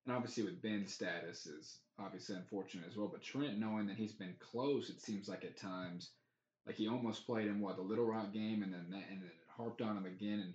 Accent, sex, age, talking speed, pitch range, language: American, male, 20-39, 240 wpm, 95-110 Hz, English